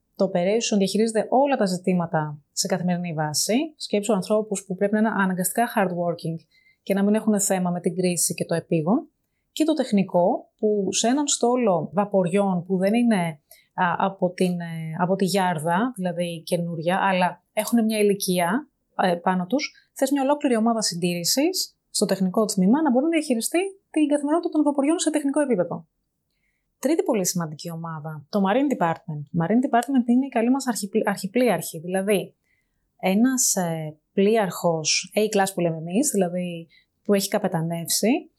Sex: female